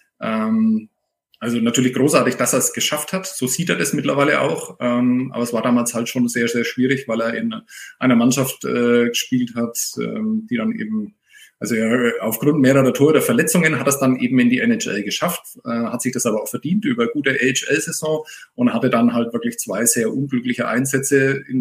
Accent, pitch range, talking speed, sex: German, 120-170 Hz, 190 wpm, male